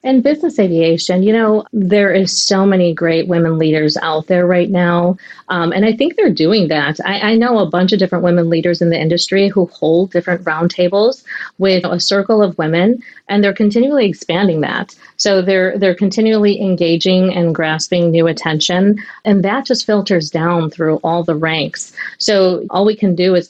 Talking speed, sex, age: 185 wpm, female, 40-59